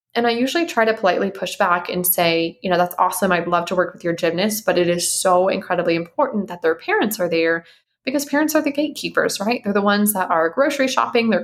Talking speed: 240 wpm